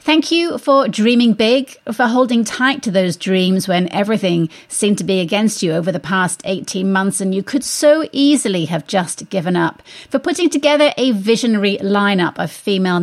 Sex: female